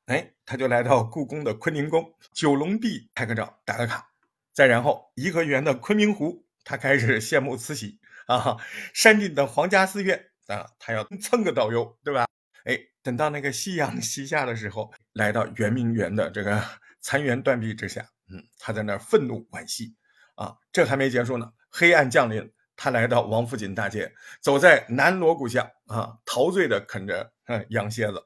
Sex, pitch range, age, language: male, 115-155 Hz, 50-69, Chinese